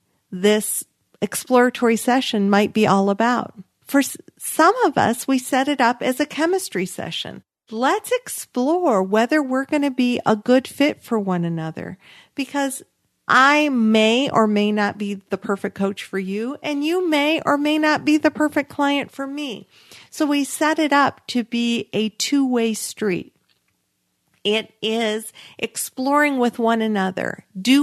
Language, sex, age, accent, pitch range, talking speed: English, female, 50-69, American, 220-295 Hz, 155 wpm